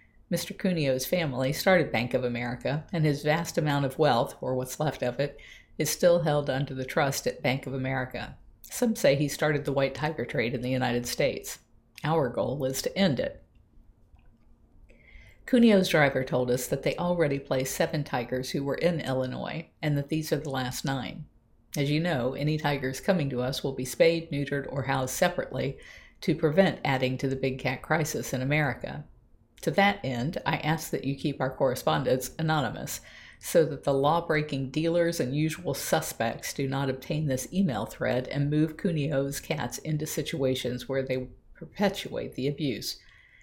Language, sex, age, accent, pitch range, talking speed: English, female, 50-69, American, 130-155 Hz, 180 wpm